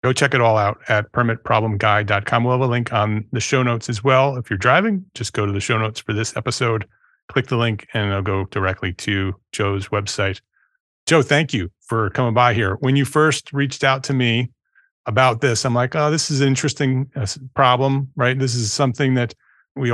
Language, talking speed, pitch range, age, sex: English, 210 wpm, 110-130 Hz, 30-49, male